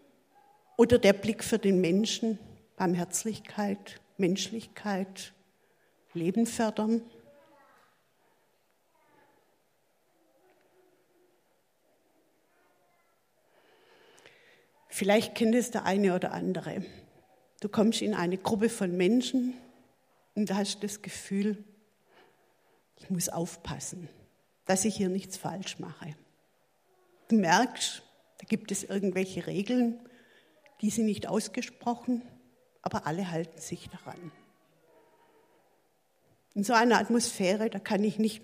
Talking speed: 95 wpm